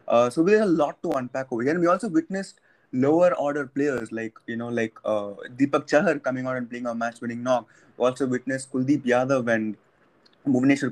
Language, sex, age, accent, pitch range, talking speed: English, male, 20-39, Indian, 120-145 Hz, 215 wpm